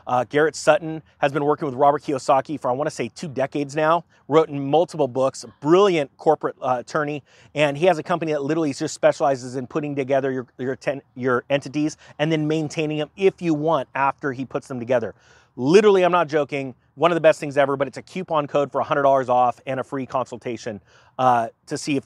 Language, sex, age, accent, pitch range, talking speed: English, male, 30-49, American, 130-175 Hz, 220 wpm